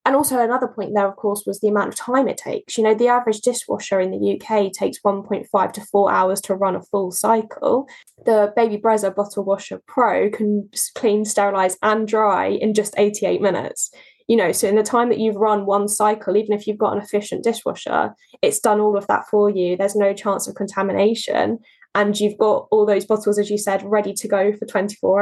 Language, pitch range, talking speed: English, 205-235 Hz, 215 wpm